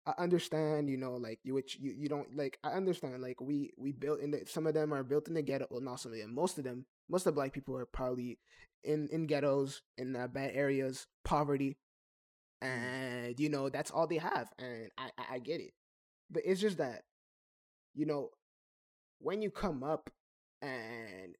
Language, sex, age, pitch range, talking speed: English, male, 20-39, 125-150 Hz, 210 wpm